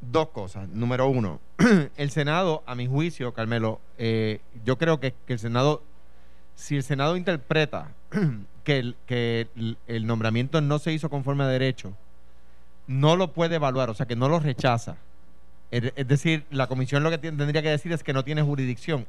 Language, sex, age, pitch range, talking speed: Spanish, male, 30-49, 100-155 Hz, 175 wpm